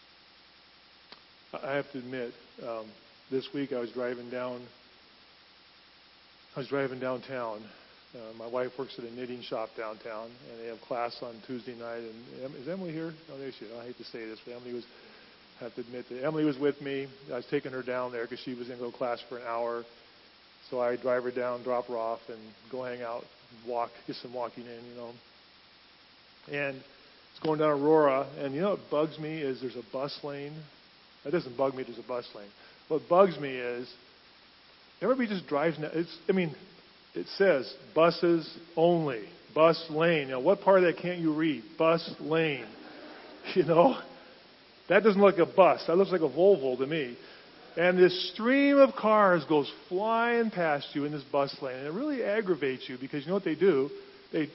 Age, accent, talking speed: 40-59, American, 200 wpm